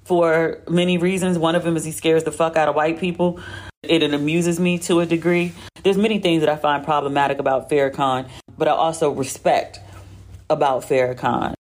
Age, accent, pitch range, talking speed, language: 40-59, American, 120-155 Hz, 185 wpm, English